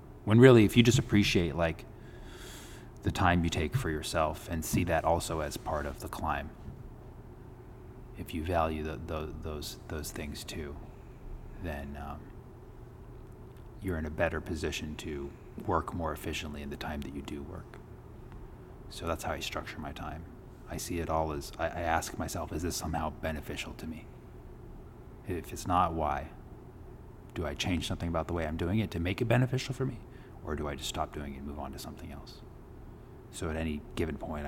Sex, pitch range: male, 75-100 Hz